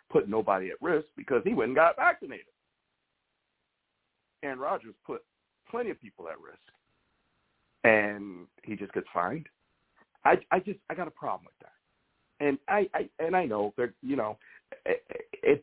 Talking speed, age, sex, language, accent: 160 wpm, 50-69, male, English, American